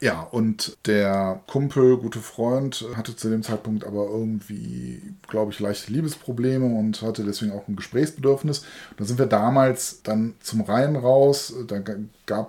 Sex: male